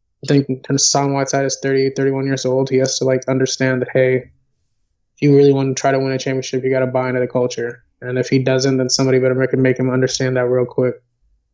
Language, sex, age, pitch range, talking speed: English, male, 20-39, 125-135 Hz, 255 wpm